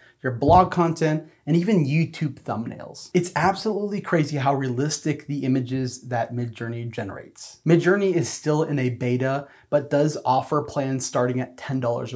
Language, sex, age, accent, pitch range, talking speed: English, male, 30-49, American, 125-160 Hz, 150 wpm